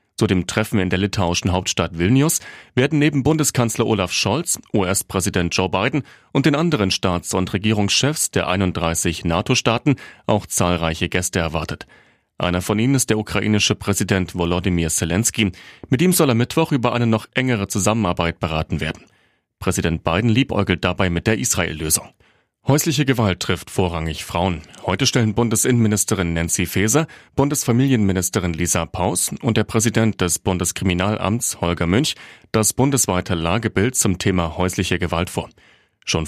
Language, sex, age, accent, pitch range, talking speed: German, male, 40-59, German, 90-115 Hz, 140 wpm